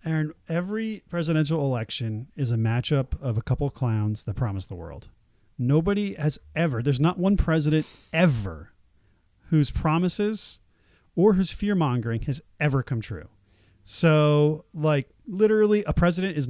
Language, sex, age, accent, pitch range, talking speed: English, male, 40-59, American, 115-155 Hz, 140 wpm